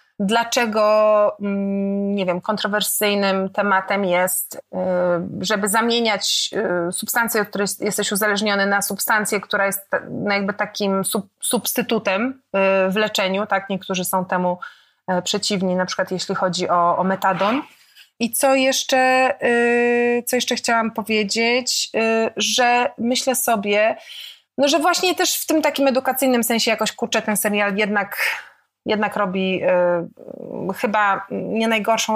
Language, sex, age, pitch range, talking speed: Polish, female, 30-49, 195-230 Hz, 110 wpm